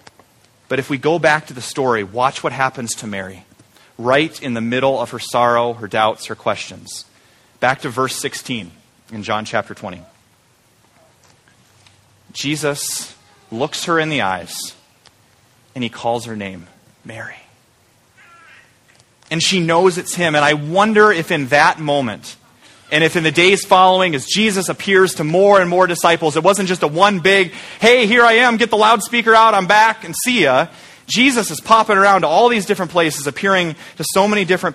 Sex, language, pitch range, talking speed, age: male, English, 135-195 Hz, 180 wpm, 30-49